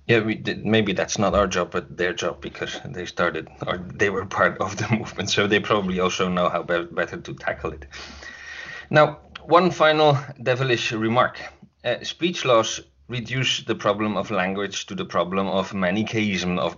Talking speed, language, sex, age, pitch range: 170 wpm, English, male, 30-49, 105-140 Hz